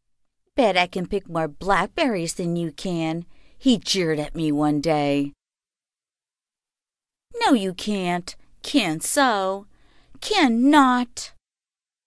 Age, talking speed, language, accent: 50-69, 105 wpm, English, American